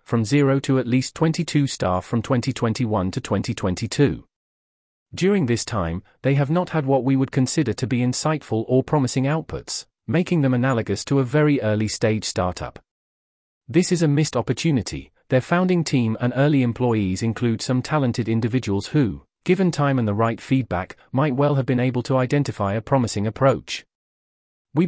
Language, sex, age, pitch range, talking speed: English, male, 40-59, 105-140 Hz, 170 wpm